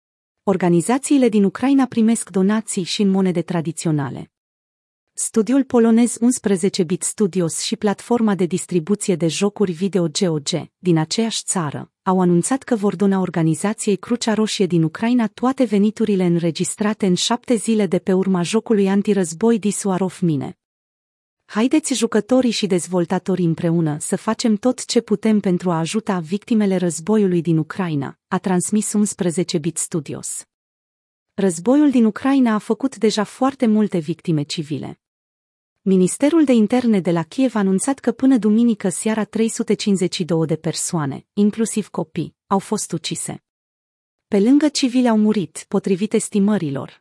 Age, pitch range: 30-49, 175-225 Hz